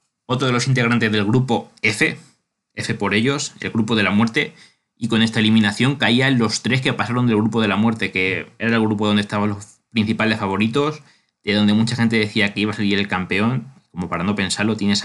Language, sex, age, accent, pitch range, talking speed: Spanish, male, 20-39, Spanish, 100-115 Hz, 215 wpm